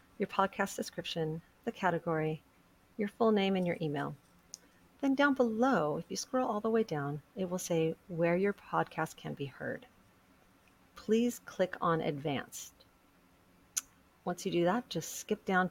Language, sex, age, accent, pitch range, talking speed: English, female, 40-59, American, 155-210 Hz, 155 wpm